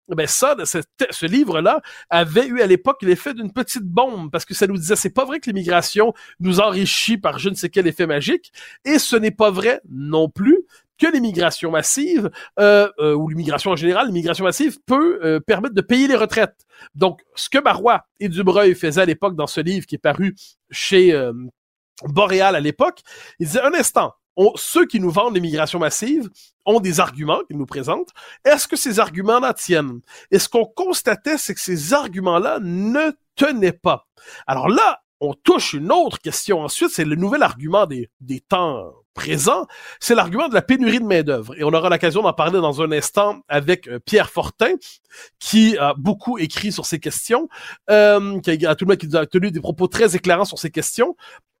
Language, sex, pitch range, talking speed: French, male, 170-245 Hz, 200 wpm